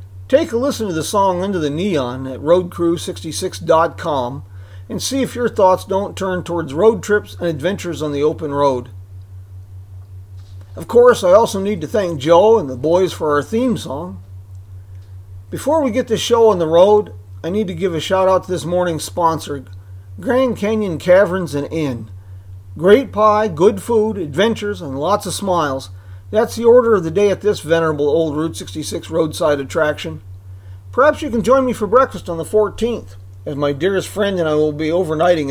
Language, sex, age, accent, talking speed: English, male, 40-59, American, 185 wpm